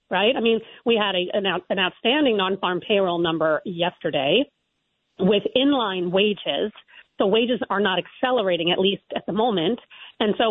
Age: 40-59